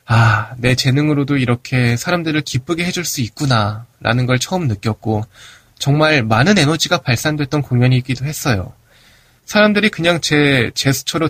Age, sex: 20-39, male